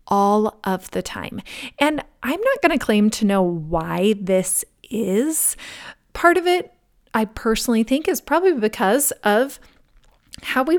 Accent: American